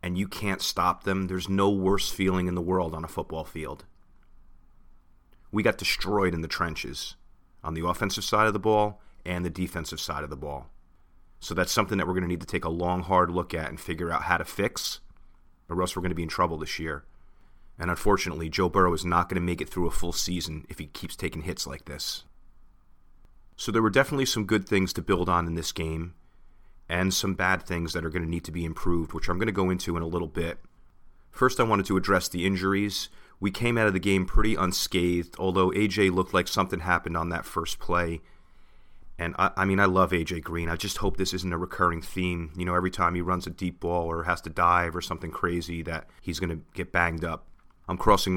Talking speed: 235 wpm